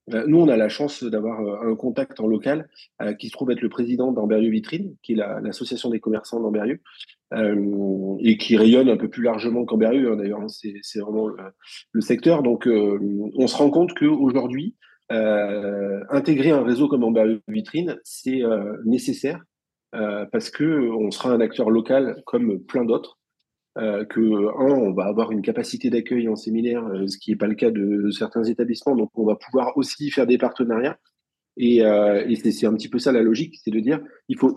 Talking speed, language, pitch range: 205 wpm, French, 105-125 Hz